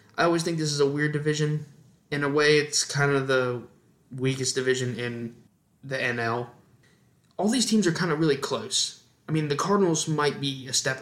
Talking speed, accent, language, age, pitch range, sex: 195 wpm, American, English, 20-39, 120-135 Hz, male